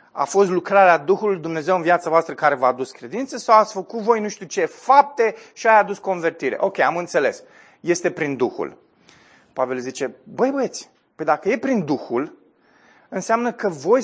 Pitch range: 190-265 Hz